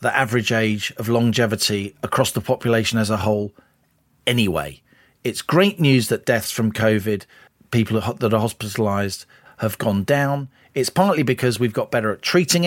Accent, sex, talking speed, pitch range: British, male, 160 wpm, 120-165 Hz